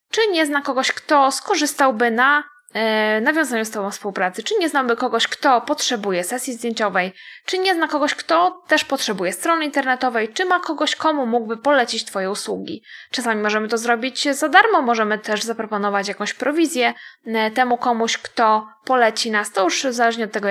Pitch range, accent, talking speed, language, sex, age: 220-290 Hz, native, 170 wpm, Polish, female, 20-39